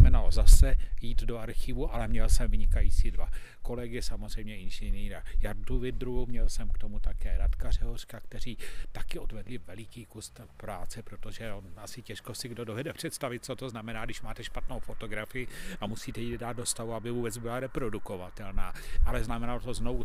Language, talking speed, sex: Czech, 165 wpm, male